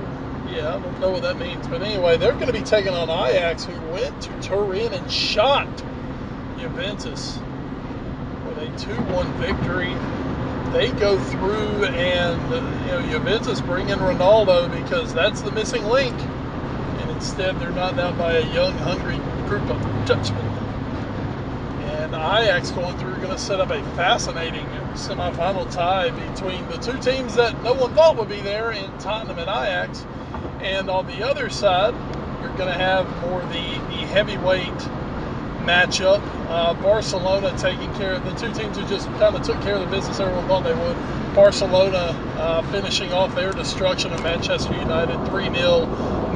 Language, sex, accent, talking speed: English, male, American, 165 wpm